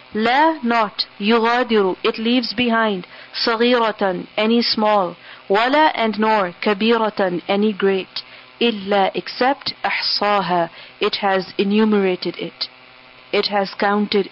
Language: English